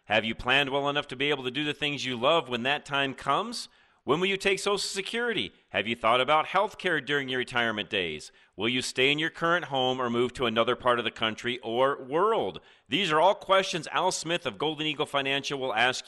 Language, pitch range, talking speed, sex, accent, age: English, 130-195 Hz, 235 wpm, male, American, 40-59